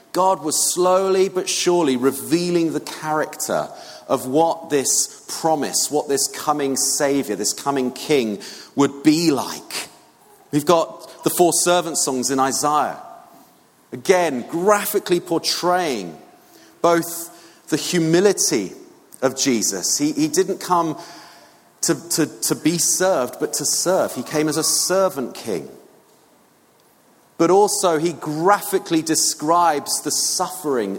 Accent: British